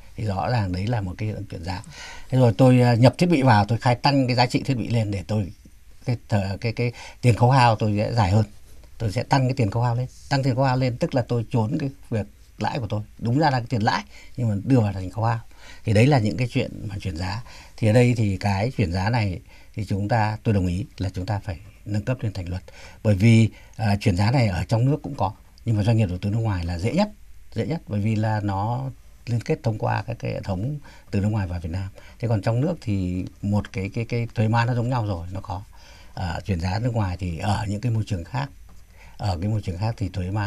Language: Vietnamese